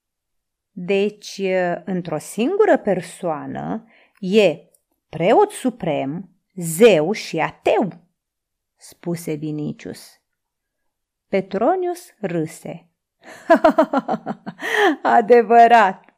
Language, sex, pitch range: Romanian, female, 175-245 Hz